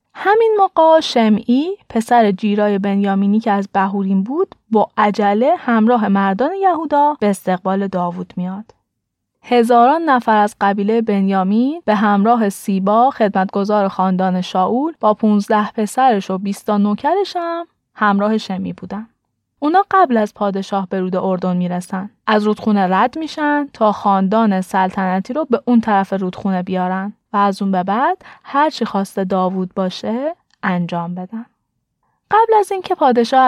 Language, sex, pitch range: Persian, female, 200-255 Hz